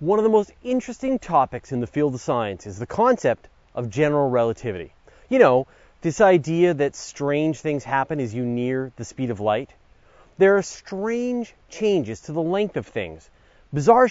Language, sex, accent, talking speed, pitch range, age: English, male, American, 180 wpm, 130-205 Hz, 30-49